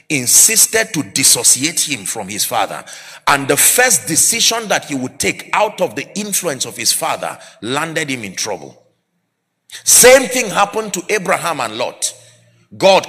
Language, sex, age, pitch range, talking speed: English, male, 40-59, 155-215 Hz, 155 wpm